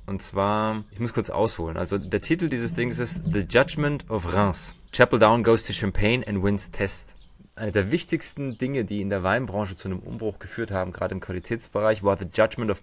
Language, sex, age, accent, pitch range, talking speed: German, male, 30-49, German, 90-110 Hz, 205 wpm